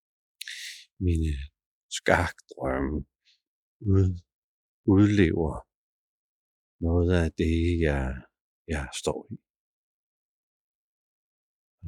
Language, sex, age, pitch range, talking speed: Danish, male, 50-69, 80-90 Hz, 55 wpm